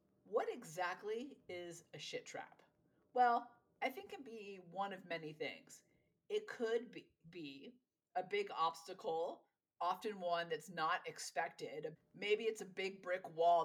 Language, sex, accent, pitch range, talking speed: English, female, American, 160-240 Hz, 145 wpm